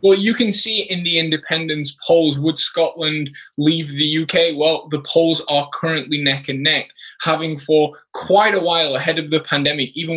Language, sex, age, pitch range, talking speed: English, male, 20-39, 135-160 Hz, 185 wpm